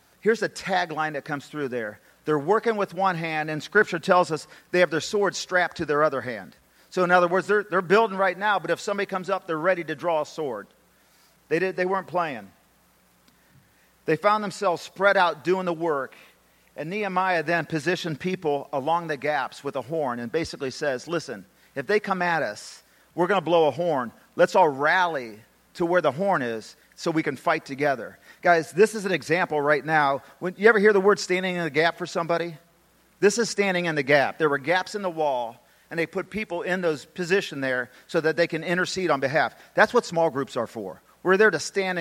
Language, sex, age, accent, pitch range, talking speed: English, male, 40-59, American, 155-185 Hz, 220 wpm